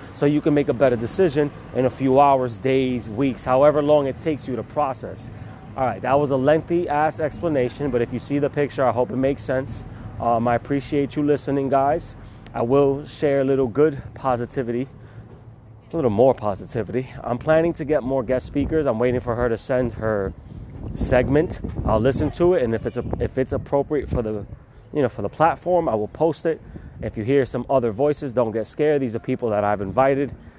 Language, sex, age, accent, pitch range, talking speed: English, male, 20-39, American, 115-145 Hz, 205 wpm